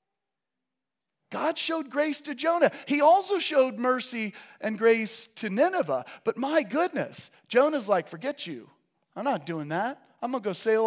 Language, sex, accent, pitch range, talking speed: English, male, American, 170-250 Hz, 160 wpm